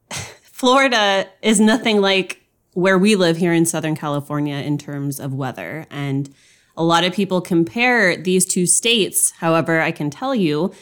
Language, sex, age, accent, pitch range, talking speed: English, female, 20-39, American, 160-205 Hz, 160 wpm